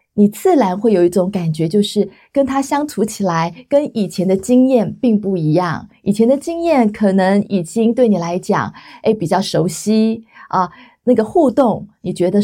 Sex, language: female, Chinese